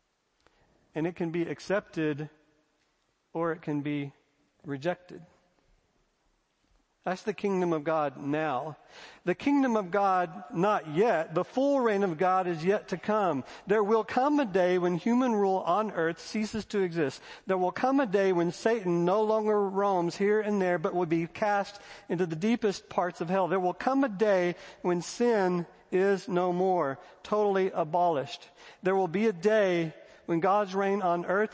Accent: American